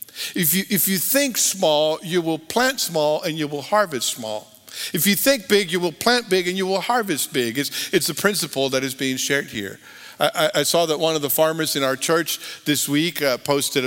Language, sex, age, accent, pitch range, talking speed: English, male, 50-69, American, 155-200 Hz, 225 wpm